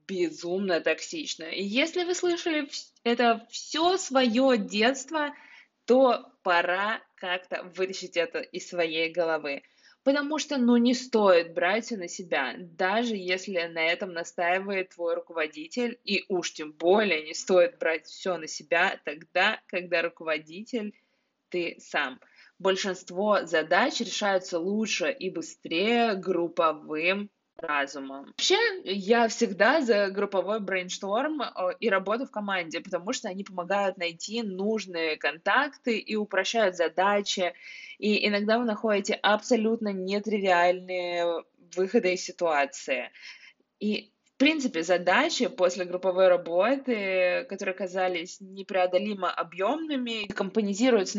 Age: 20-39